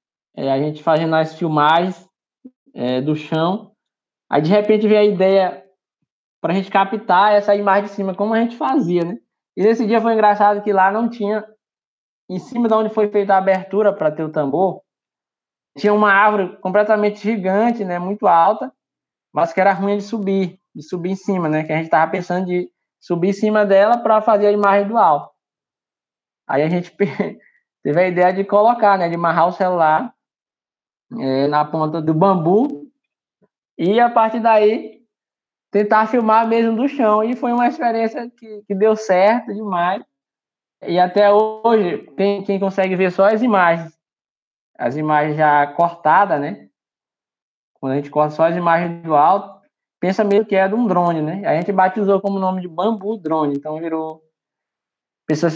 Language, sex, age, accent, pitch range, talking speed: Portuguese, male, 20-39, Brazilian, 170-215 Hz, 175 wpm